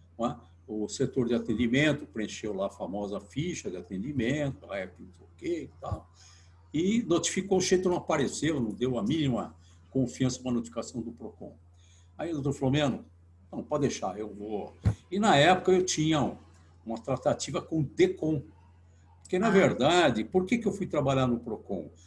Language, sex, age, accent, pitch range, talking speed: Portuguese, male, 60-79, Brazilian, 90-140 Hz, 165 wpm